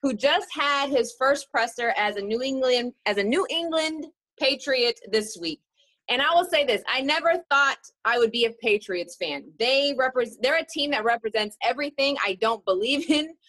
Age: 30-49